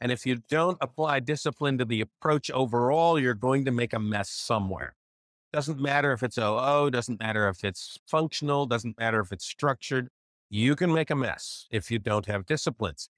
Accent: American